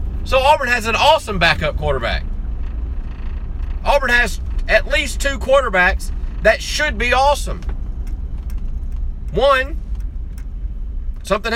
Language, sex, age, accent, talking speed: English, male, 40-59, American, 100 wpm